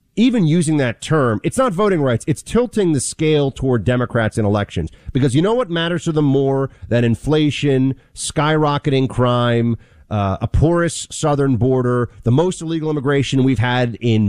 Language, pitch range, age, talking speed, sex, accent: English, 115-155 Hz, 40-59, 170 wpm, male, American